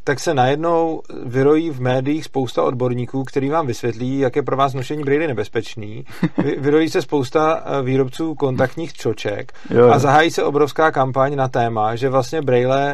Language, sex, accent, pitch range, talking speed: Czech, male, native, 125-140 Hz, 160 wpm